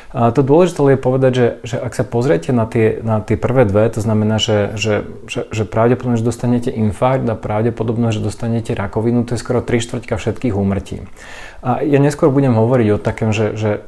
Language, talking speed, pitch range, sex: Slovak, 200 wpm, 105-120 Hz, male